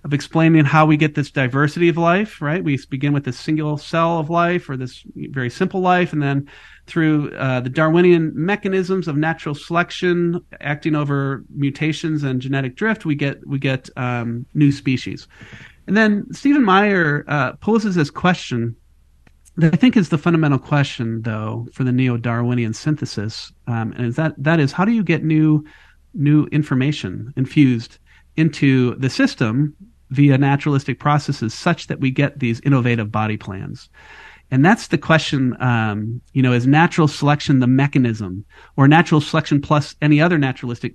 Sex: male